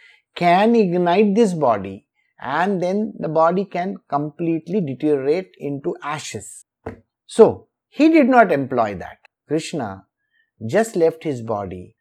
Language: English